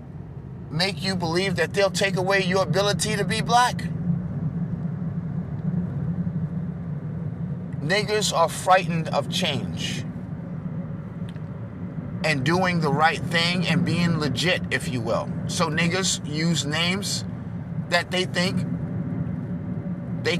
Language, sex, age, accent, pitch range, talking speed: English, male, 30-49, American, 150-180 Hz, 105 wpm